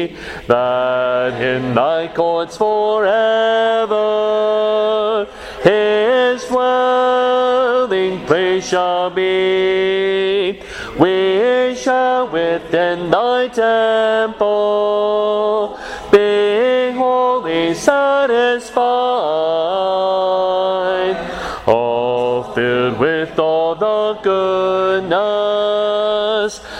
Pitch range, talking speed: 165-215 Hz, 55 wpm